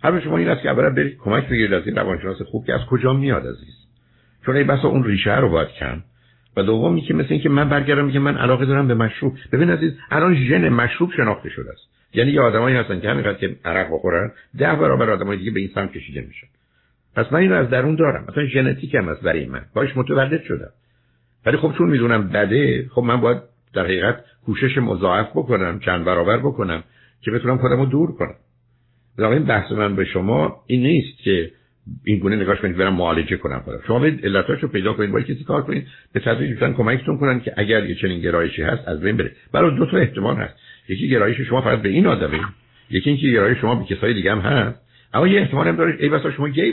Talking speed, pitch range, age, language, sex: 215 wpm, 95-135 Hz, 60-79, Persian, male